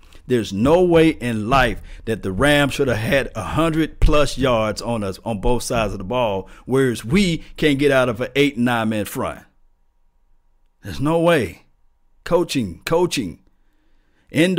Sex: male